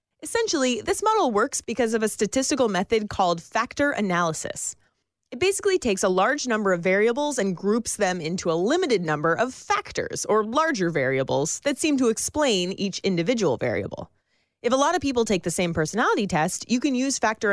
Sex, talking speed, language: female, 180 wpm, English